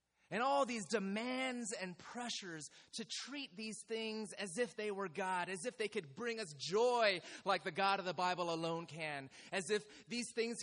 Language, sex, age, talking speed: English, male, 30-49, 190 wpm